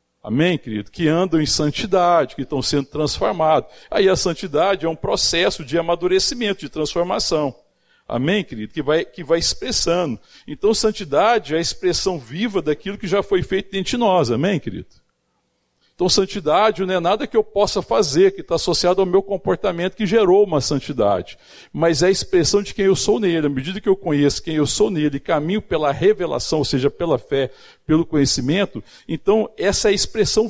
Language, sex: Portuguese, male